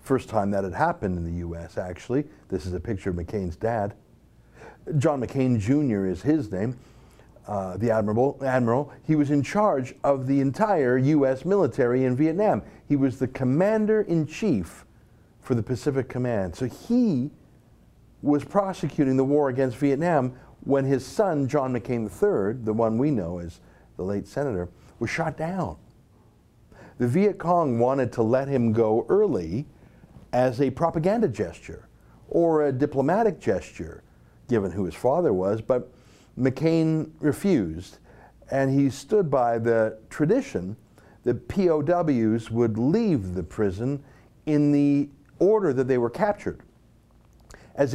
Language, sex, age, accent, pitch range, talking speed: English, male, 50-69, American, 110-150 Hz, 145 wpm